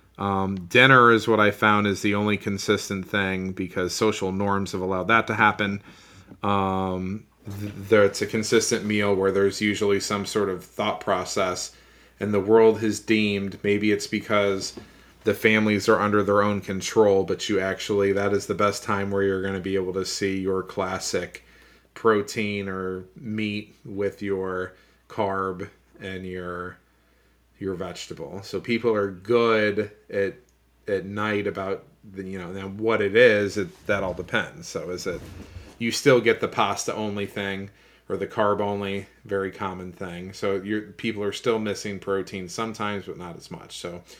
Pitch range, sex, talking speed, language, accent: 95-105 Hz, male, 170 wpm, English, American